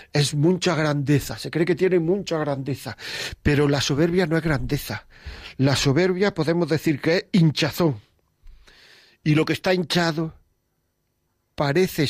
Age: 50-69